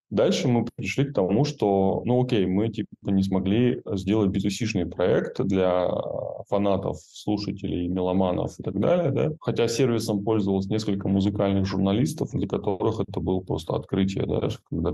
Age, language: 20-39, Russian